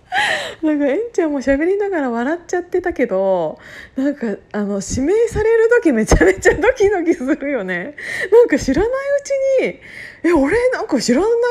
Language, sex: Japanese, female